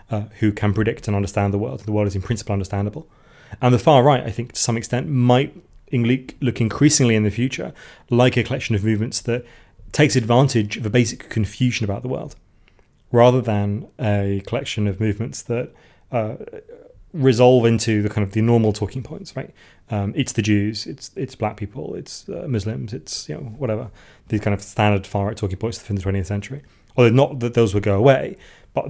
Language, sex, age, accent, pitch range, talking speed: English, male, 30-49, British, 105-125 Hz, 200 wpm